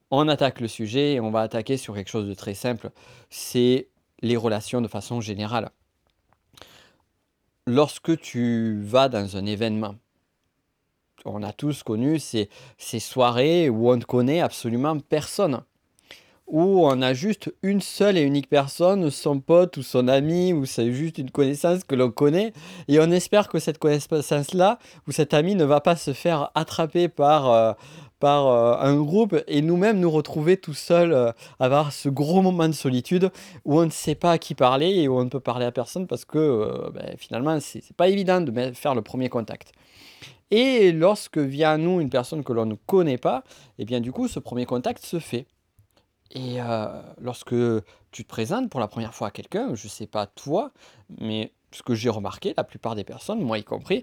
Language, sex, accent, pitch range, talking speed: French, male, French, 120-165 Hz, 195 wpm